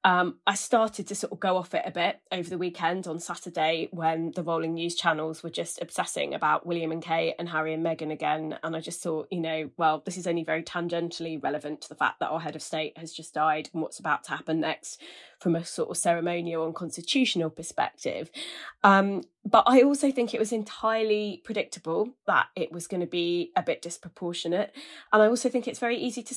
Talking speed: 220 wpm